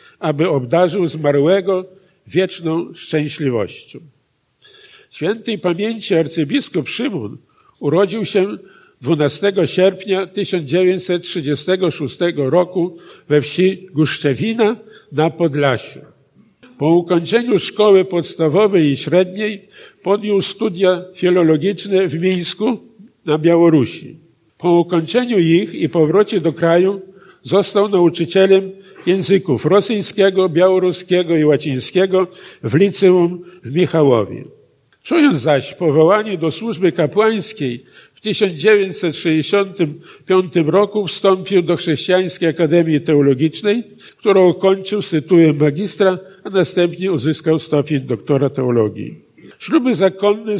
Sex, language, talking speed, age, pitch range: male, Polish, 90 wpm, 50-69, 160-195 Hz